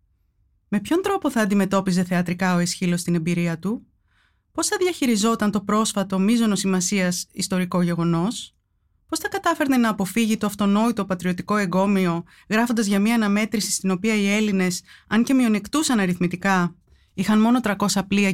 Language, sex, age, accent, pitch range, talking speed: Greek, female, 20-39, native, 175-215 Hz, 145 wpm